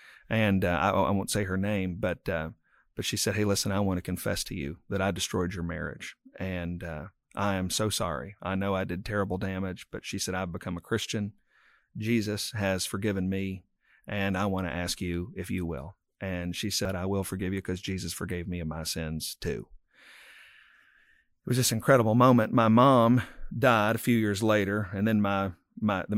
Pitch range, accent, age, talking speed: 95-110 Hz, American, 40-59, 205 wpm